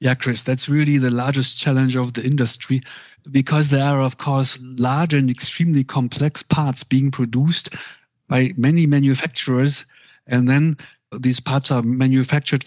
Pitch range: 125-145 Hz